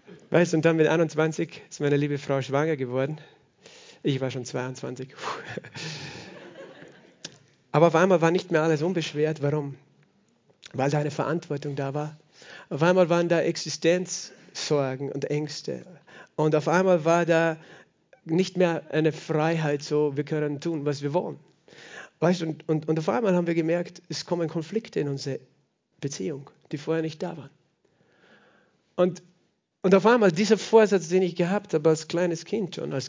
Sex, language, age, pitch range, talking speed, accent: male, German, 50-69, 145-170 Hz, 160 wpm, German